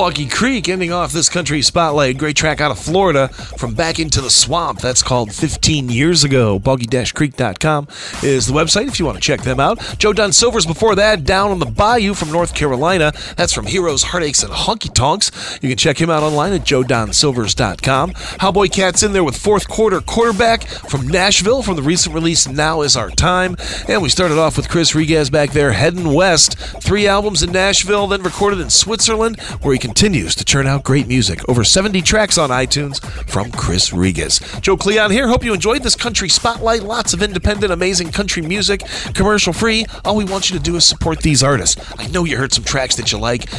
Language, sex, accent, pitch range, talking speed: English, male, American, 135-195 Hz, 210 wpm